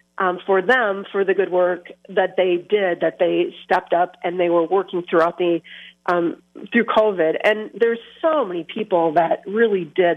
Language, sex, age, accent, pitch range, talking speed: English, female, 40-59, American, 180-220 Hz, 185 wpm